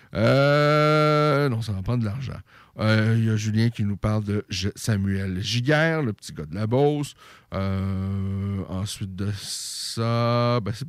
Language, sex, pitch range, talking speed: French, male, 100-125 Hz, 170 wpm